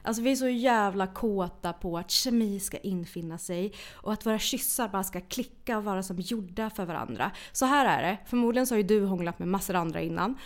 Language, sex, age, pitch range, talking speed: Swedish, female, 30-49, 175-220 Hz, 230 wpm